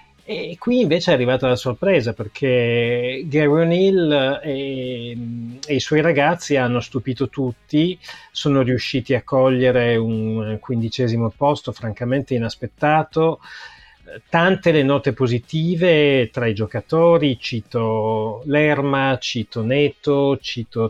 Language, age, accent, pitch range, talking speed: Italian, 40-59, native, 120-150 Hz, 110 wpm